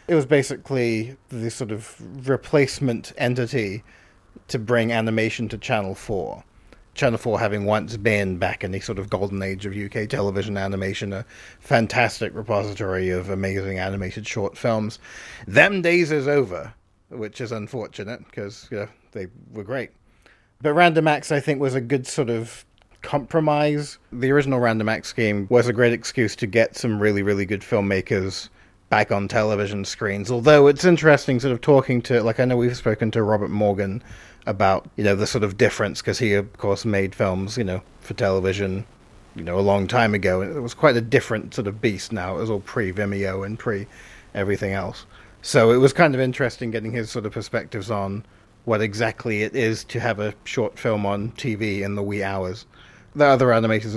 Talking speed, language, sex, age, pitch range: 185 wpm, English, male, 30-49, 100-120 Hz